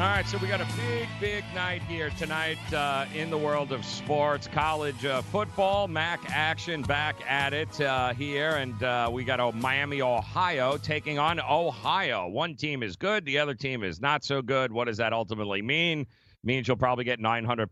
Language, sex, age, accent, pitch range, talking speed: English, male, 40-59, American, 115-150 Hz, 205 wpm